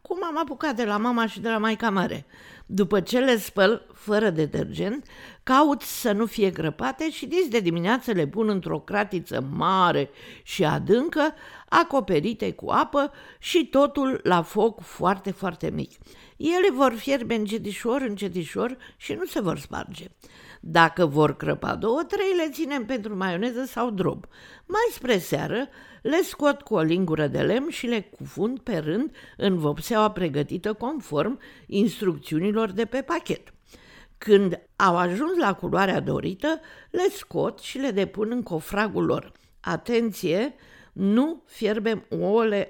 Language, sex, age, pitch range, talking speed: Romanian, female, 50-69, 195-270 Hz, 150 wpm